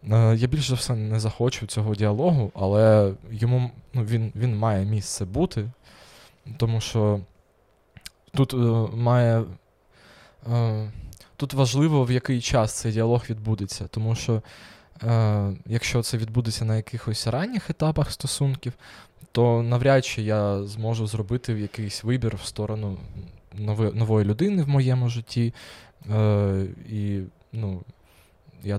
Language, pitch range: Ukrainian, 105-125 Hz